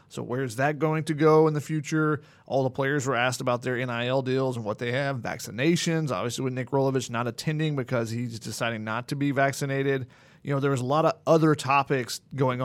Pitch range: 130-155 Hz